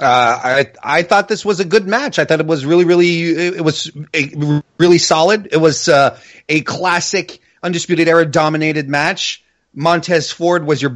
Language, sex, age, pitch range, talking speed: English, male, 30-49, 145-190 Hz, 180 wpm